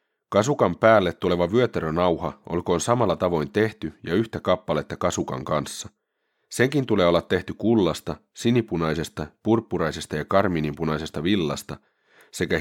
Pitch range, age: 80-105 Hz, 30-49